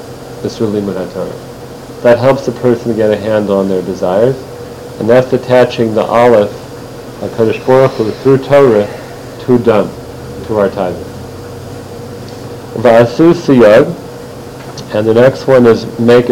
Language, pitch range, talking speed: English, 115-125 Hz, 120 wpm